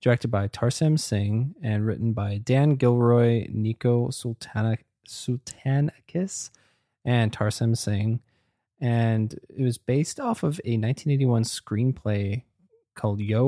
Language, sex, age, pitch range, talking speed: English, male, 20-39, 110-135 Hz, 110 wpm